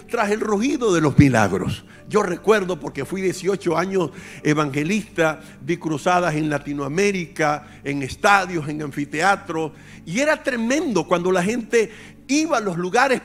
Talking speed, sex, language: 140 wpm, male, English